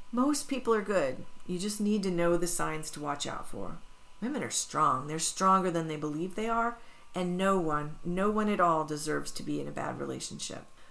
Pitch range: 160-195 Hz